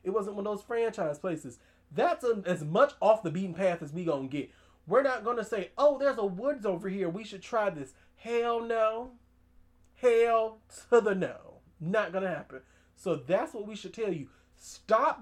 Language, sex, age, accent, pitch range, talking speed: English, male, 30-49, American, 150-205 Hz, 195 wpm